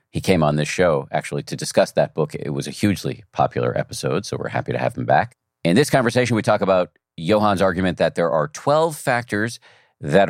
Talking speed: 215 wpm